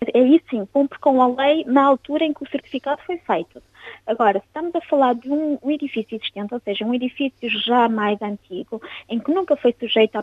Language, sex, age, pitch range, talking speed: Portuguese, female, 20-39, 215-265 Hz, 215 wpm